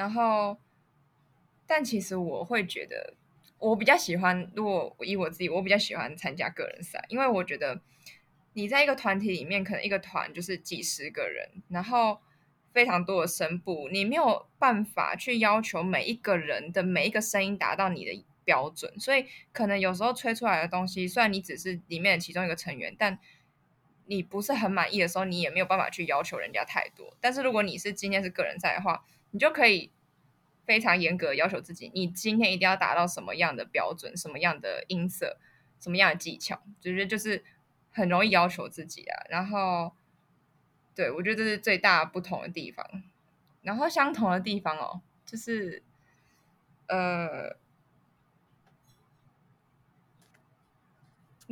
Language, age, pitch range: Chinese, 20-39, 175-220 Hz